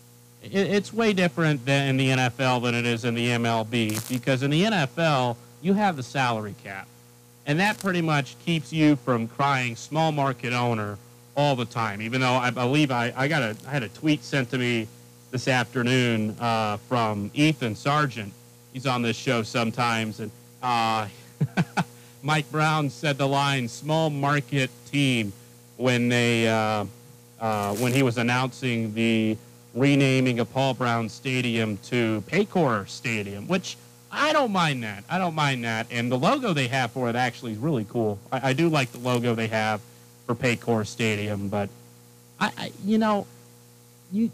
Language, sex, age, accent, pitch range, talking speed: English, male, 40-59, American, 115-150 Hz, 170 wpm